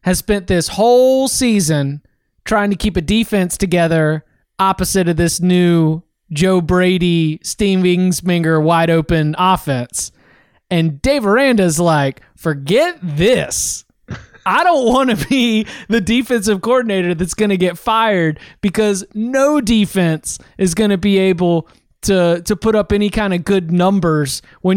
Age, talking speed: 20-39, 140 wpm